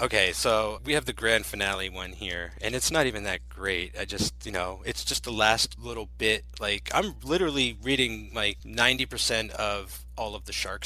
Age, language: 30-49, English